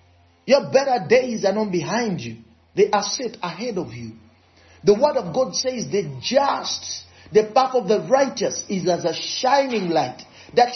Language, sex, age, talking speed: English, male, 40-59, 175 wpm